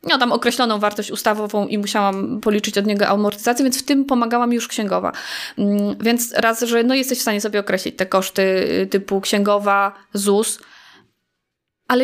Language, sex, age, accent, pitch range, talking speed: Polish, female, 20-39, native, 210-240 Hz, 160 wpm